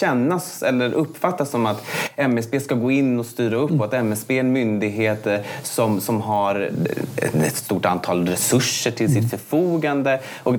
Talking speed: 165 wpm